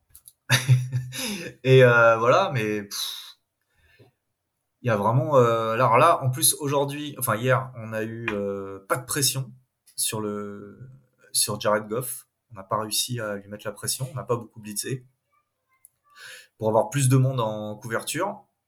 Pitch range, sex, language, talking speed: 105-130 Hz, male, French, 160 wpm